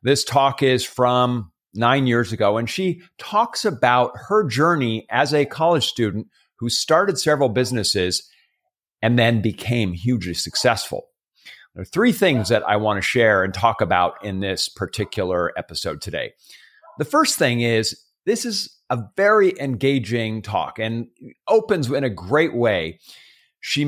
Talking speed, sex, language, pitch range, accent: 150 wpm, male, English, 110-145 Hz, American